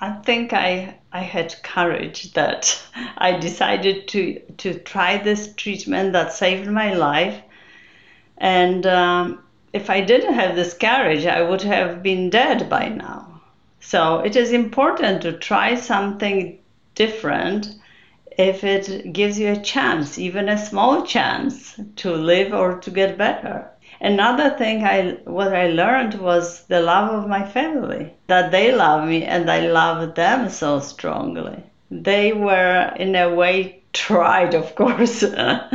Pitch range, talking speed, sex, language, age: 175-215 Hz, 145 wpm, female, English, 50-69